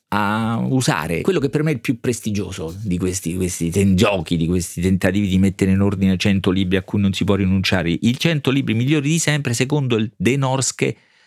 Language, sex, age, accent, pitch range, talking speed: Italian, male, 40-59, native, 95-135 Hz, 210 wpm